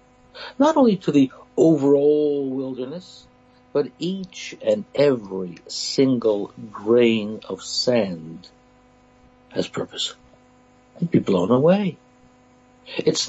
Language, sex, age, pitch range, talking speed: English, male, 60-79, 115-135 Hz, 100 wpm